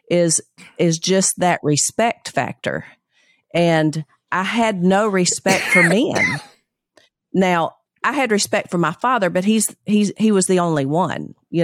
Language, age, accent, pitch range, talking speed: English, 40-59, American, 155-195 Hz, 150 wpm